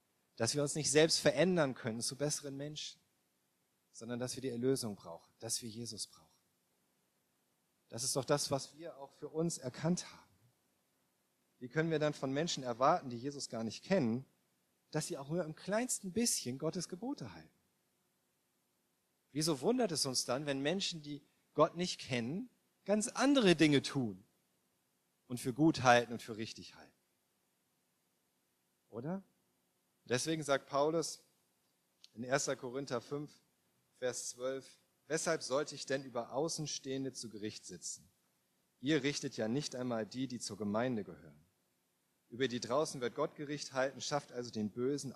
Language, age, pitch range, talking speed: German, 40-59, 120-155 Hz, 155 wpm